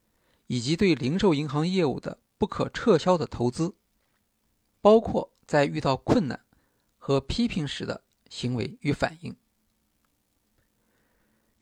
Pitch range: 130-195 Hz